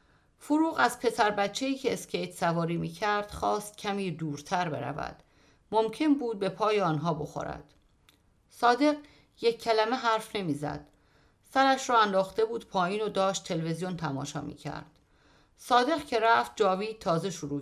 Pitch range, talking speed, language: 170-230 Hz, 135 wpm, Persian